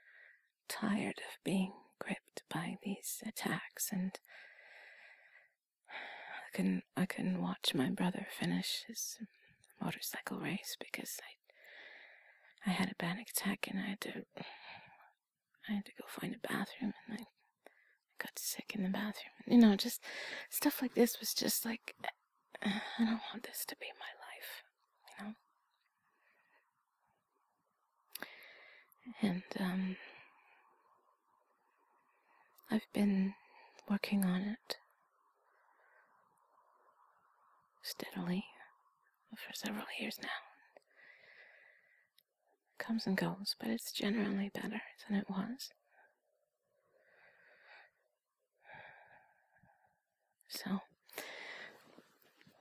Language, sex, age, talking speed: English, female, 30-49, 100 wpm